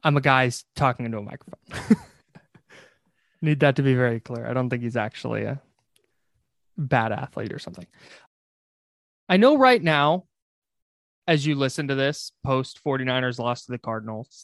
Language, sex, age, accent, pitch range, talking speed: English, male, 20-39, American, 130-180 Hz, 160 wpm